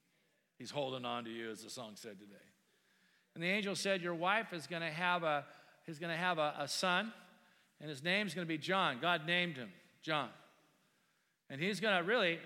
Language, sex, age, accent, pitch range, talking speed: English, male, 50-69, American, 145-175 Hz, 205 wpm